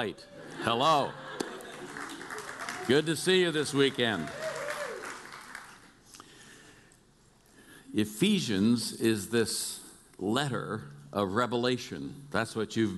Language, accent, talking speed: English, American, 75 wpm